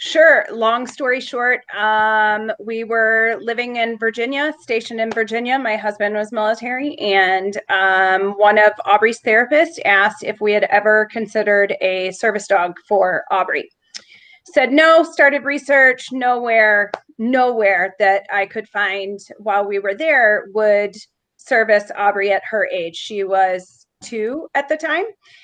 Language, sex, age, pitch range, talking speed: English, female, 30-49, 200-255 Hz, 140 wpm